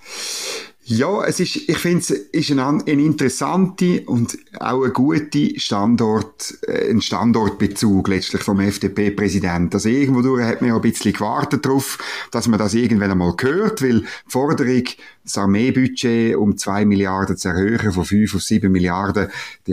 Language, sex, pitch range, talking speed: German, male, 105-140 Hz, 150 wpm